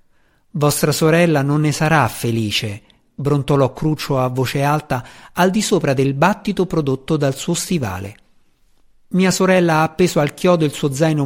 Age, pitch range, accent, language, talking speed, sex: 50-69, 125-180 Hz, native, Italian, 155 wpm, male